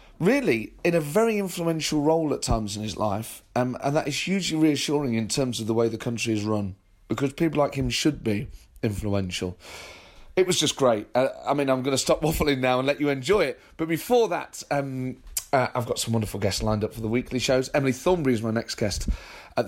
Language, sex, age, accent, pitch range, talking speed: English, male, 30-49, British, 110-140 Hz, 225 wpm